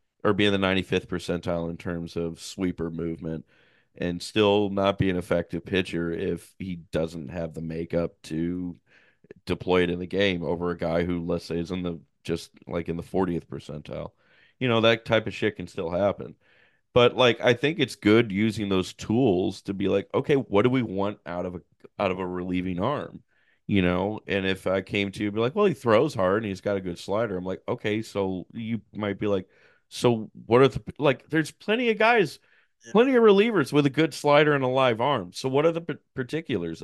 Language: English